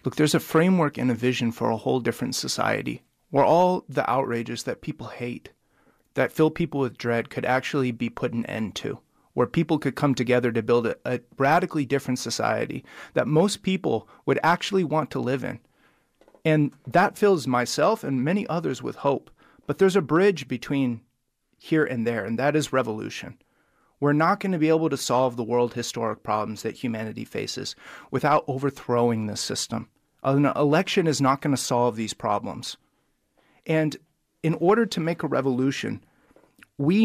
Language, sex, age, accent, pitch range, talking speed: English, male, 30-49, American, 125-170 Hz, 175 wpm